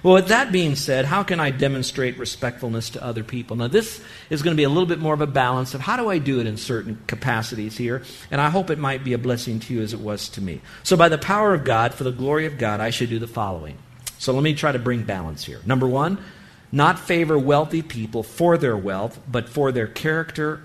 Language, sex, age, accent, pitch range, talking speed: English, male, 50-69, American, 115-160 Hz, 255 wpm